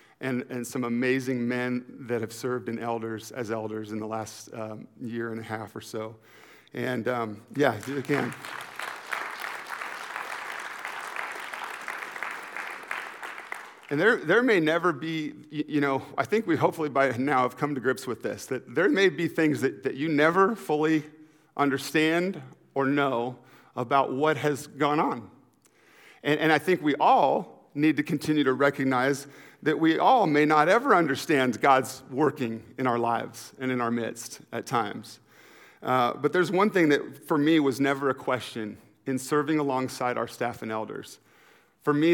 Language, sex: English, male